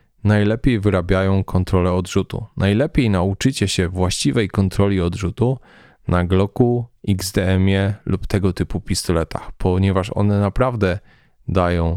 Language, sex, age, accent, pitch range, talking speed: Polish, male, 20-39, native, 95-105 Hz, 105 wpm